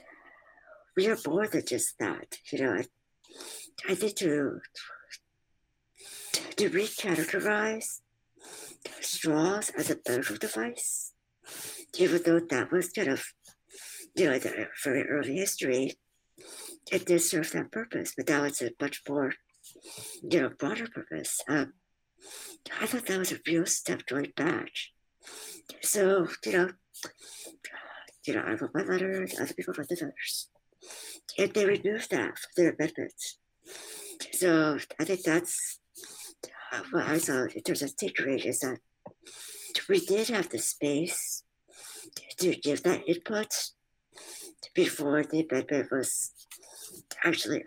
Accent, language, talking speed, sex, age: American, English, 130 wpm, male, 60-79